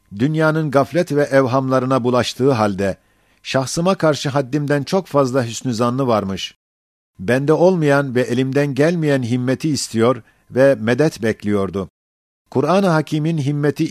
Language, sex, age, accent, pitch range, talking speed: Turkish, male, 50-69, native, 120-150 Hz, 115 wpm